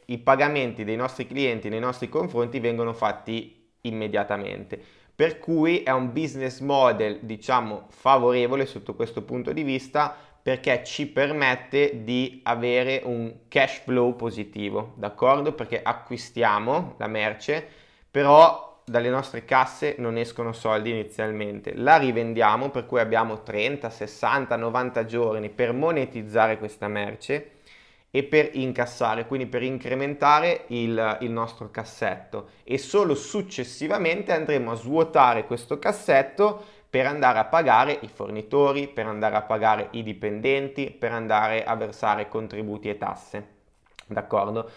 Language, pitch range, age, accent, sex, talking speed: Italian, 110-135 Hz, 20-39, native, male, 130 wpm